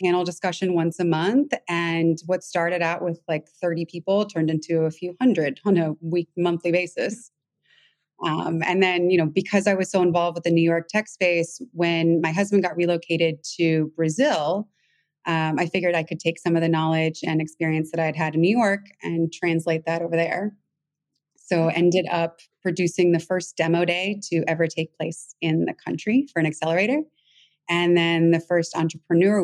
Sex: female